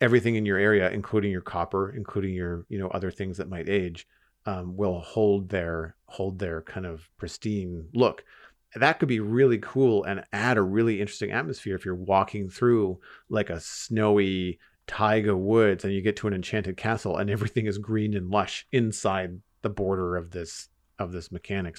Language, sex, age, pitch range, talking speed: English, male, 40-59, 95-115 Hz, 185 wpm